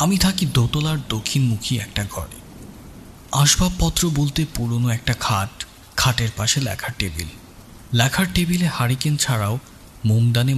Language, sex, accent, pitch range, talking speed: Bengali, male, native, 100-135 Hz, 115 wpm